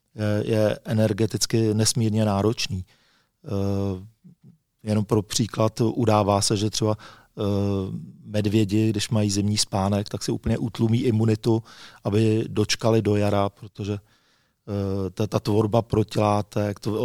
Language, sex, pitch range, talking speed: Czech, male, 105-115 Hz, 115 wpm